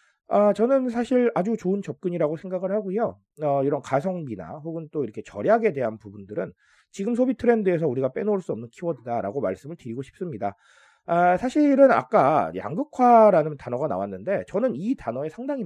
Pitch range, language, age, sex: 150-225 Hz, Korean, 30-49, male